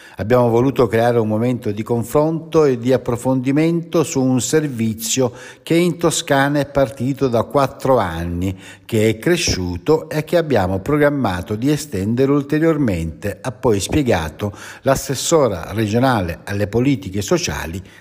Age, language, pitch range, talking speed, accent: 60-79, Italian, 105-145 Hz, 130 wpm, native